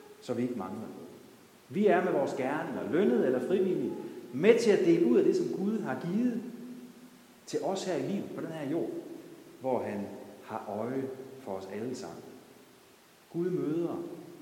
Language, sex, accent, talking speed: Danish, male, native, 180 wpm